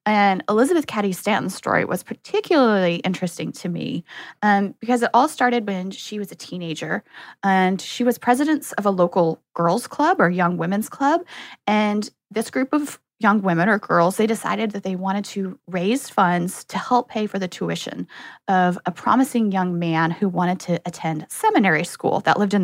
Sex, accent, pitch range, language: female, American, 185-255 Hz, English